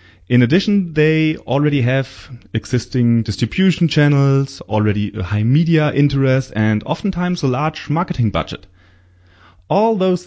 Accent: German